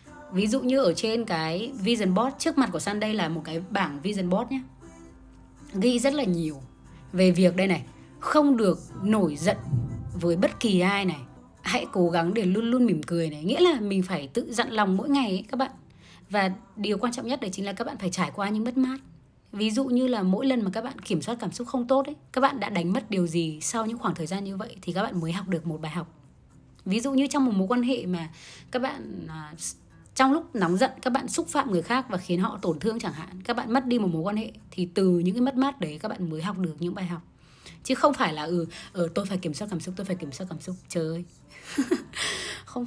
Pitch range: 170-245 Hz